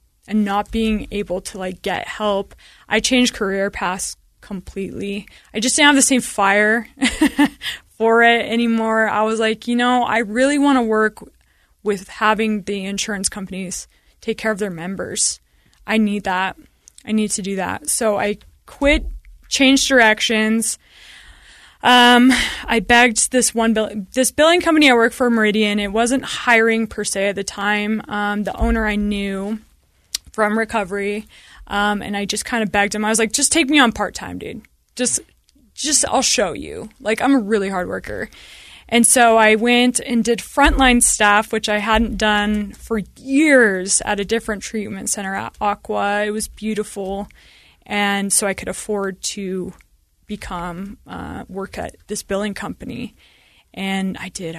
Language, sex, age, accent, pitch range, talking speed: English, female, 20-39, American, 200-235 Hz, 170 wpm